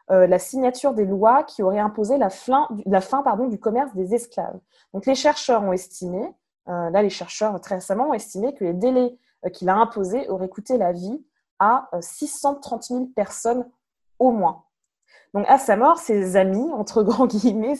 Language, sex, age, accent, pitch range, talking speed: French, female, 20-39, French, 195-260 Hz, 195 wpm